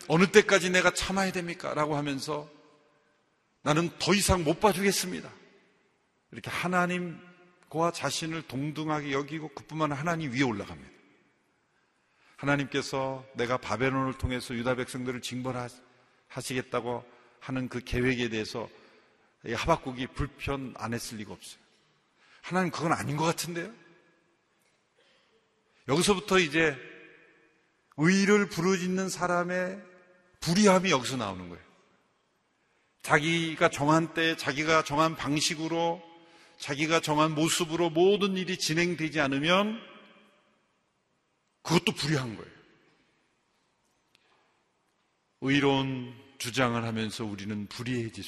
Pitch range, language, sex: 125-170 Hz, Korean, male